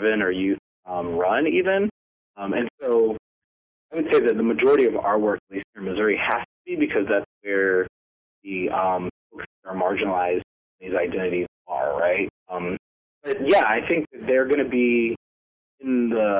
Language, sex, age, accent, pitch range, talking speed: English, male, 20-39, American, 100-155 Hz, 185 wpm